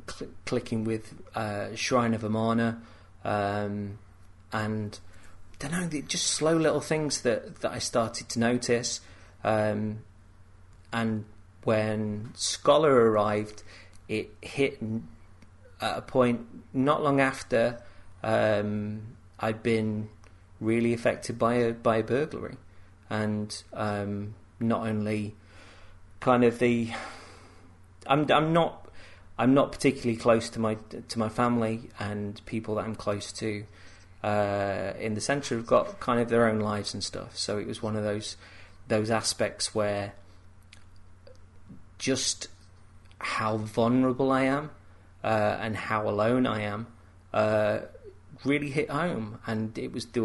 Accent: British